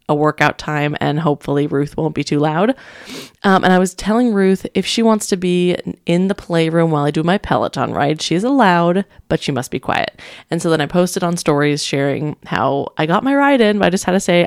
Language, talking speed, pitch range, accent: English, 240 wpm, 160-205 Hz, American